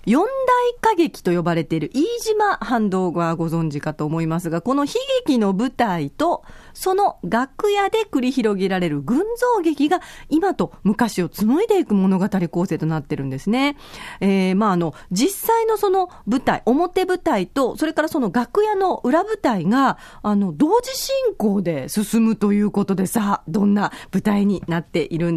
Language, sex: Japanese, female